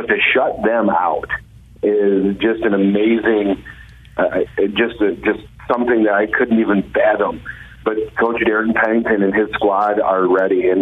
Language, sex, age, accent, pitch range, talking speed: English, male, 40-59, American, 100-110 Hz, 160 wpm